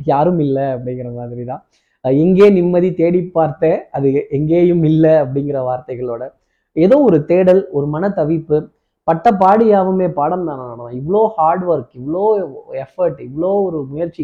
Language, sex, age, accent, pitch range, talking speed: Tamil, male, 20-39, native, 140-185 Hz, 120 wpm